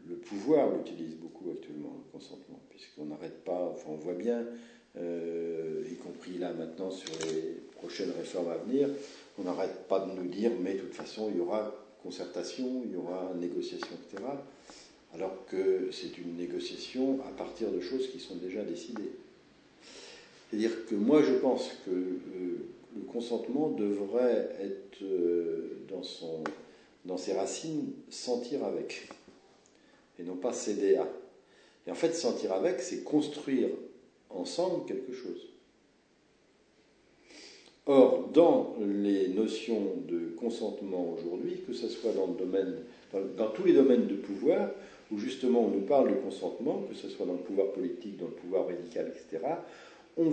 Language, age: French, 50-69